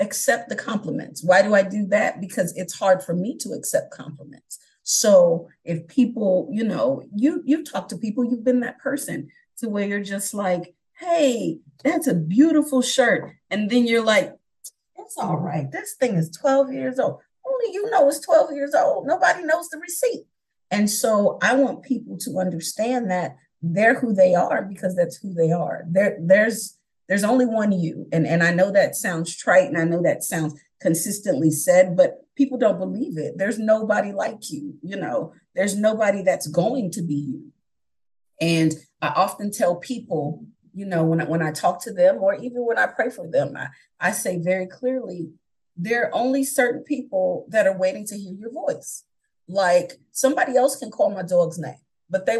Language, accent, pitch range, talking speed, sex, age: English, American, 175-260 Hz, 190 wpm, female, 40-59